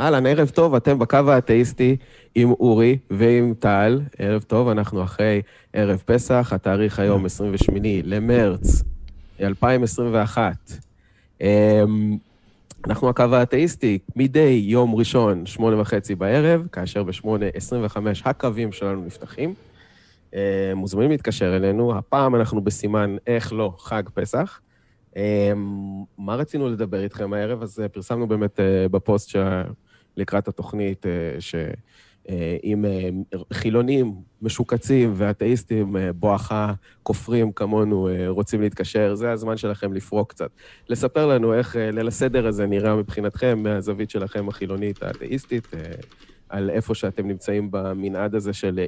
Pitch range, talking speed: 100-120 Hz, 115 wpm